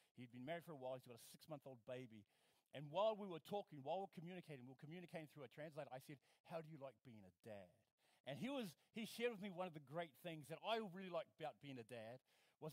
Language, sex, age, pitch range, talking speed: English, male, 40-59, 125-165 Hz, 265 wpm